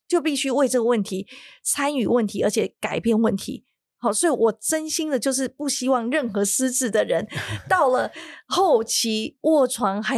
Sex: female